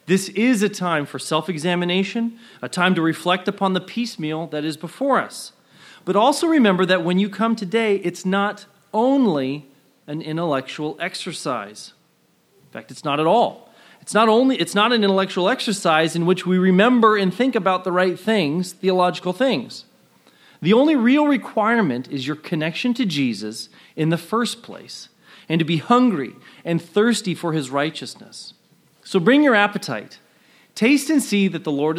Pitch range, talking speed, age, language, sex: 155-210 Hz, 165 wpm, 30-49, English, male